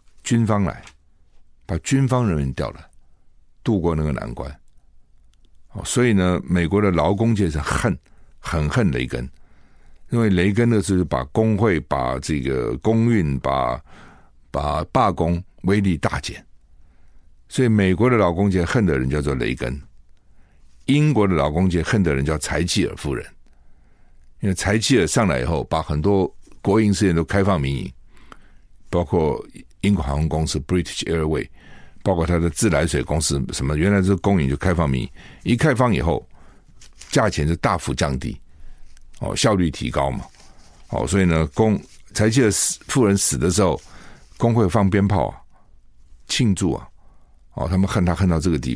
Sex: male